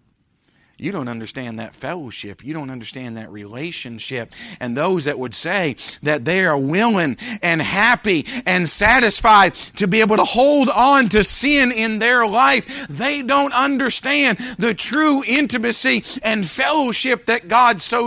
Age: 40-59